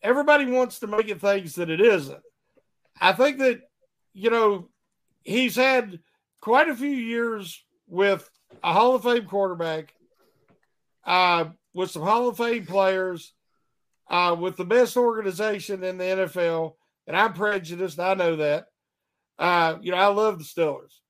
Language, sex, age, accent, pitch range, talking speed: English, male, 50-69, American, 195-275 Hz, 155 wpm